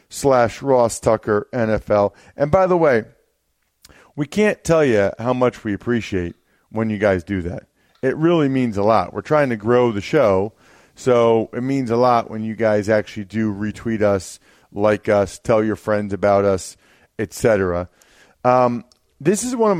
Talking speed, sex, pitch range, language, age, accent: 170 wpm, male, 110-155 Hz, English, 40-59, American